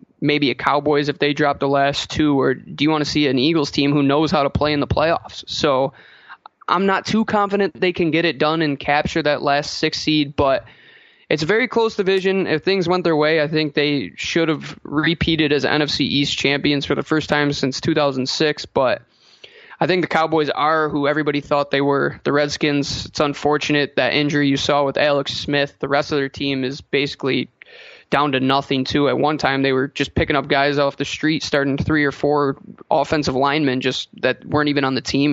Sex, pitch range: male, 140-165 Hz